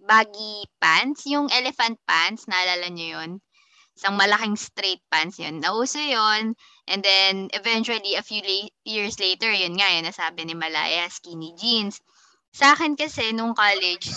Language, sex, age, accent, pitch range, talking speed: Filipino, female, 20-39, native, 185-245 Hz, 155 wpm